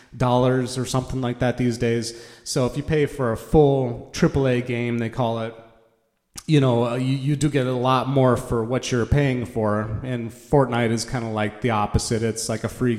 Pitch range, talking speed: 110-130 Hz, 215 wpm